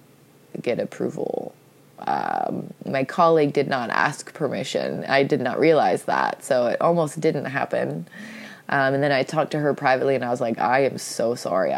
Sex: female